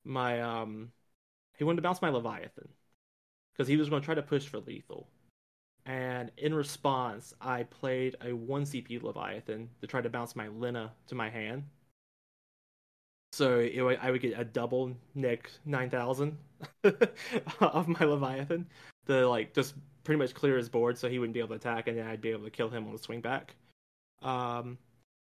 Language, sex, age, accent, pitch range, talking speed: English, male, 20-39, American, 120-140 Hz, 185 wpm